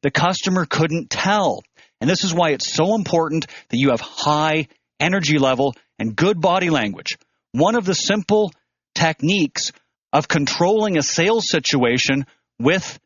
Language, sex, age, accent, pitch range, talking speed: English, male, 40-59, American, 135-180 Hz, 145 wpm